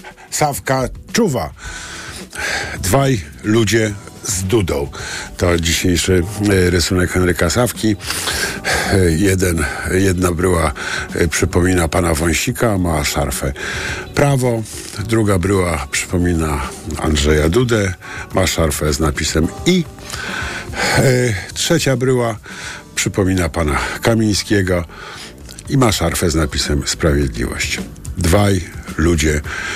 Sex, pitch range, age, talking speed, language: male, 85-110 Hz, 50-69, 85 wpm, Polish